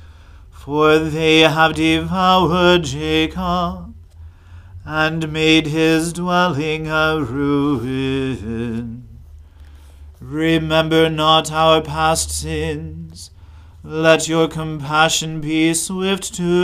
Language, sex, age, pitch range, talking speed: English, male, 40-59, 130-160 Hz, 80 wpm